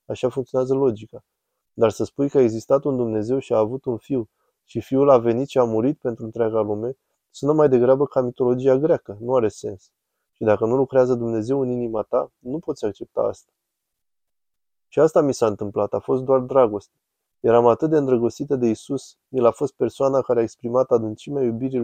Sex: male